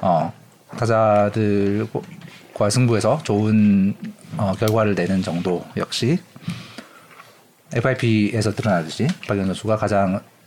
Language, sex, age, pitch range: Korean, male, 40-59, 110-170 Hz